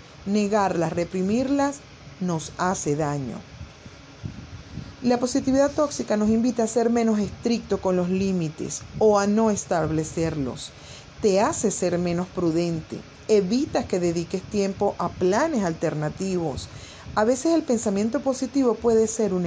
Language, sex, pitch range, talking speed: Spanish, female, 175-235 Hz, 125 wpm